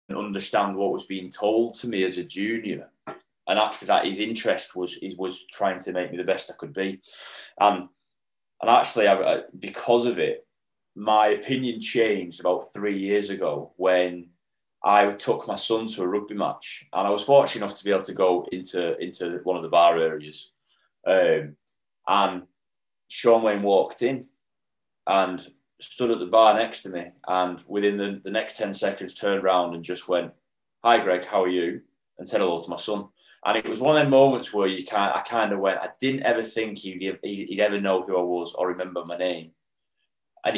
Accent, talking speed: British, 200 wpm